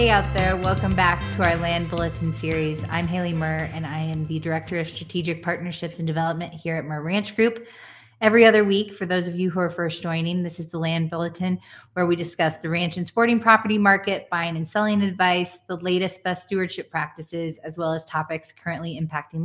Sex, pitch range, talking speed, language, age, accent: female, 165-185 Hz, 210 wpm, English, 20-39, American